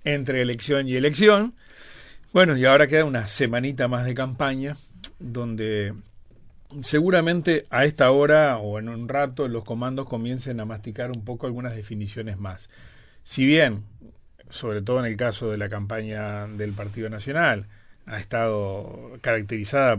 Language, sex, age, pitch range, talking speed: Spanish, male, 40-59, 110-140 Hz, 145 wpm